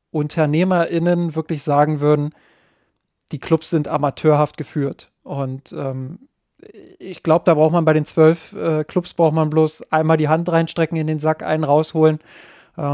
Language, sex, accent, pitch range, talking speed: German, male, German, 150-170 Hz, 155 wpm